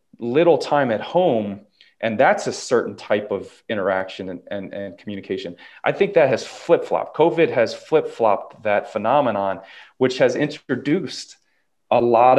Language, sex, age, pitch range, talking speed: English, male, 30-49, 105-135 Hz, 145 wpm